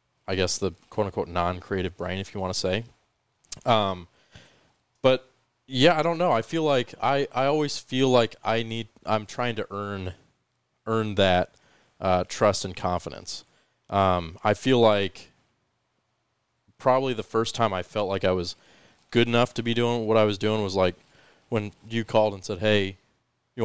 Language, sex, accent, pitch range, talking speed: English, male, American, 95-110 Hz, 175 wpm